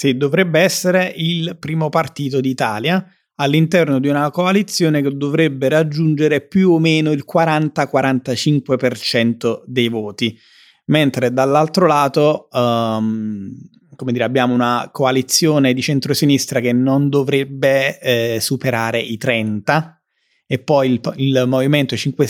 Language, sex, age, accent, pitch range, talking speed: Italian, male, 30-49, native, 120-150 Hz, 120 wpm